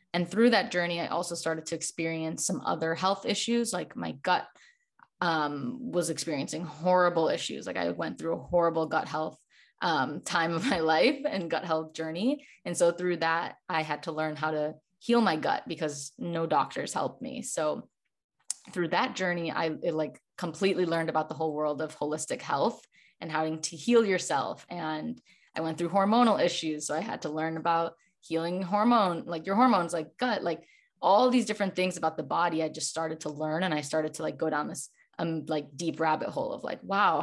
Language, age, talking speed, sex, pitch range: English, 20-39, 200 wpm, female, 155-180 Hz